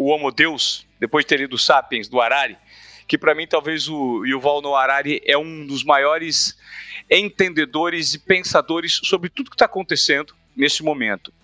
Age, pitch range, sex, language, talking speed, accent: 40-59, 145-205 Hz, male, Portuguese, 175 wpm, Brazilian